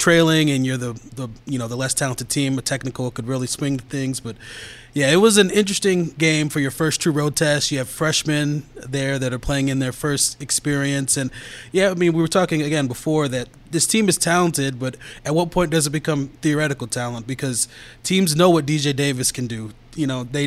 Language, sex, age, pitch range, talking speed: English, male, 20-39, 130-155 Hz, 220 wpm